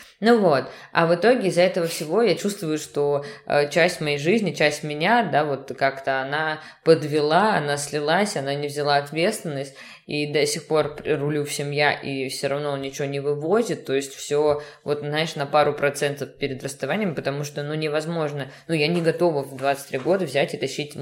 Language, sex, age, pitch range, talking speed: Russian, female, 20-39, 145-170 Hz, 190 wpm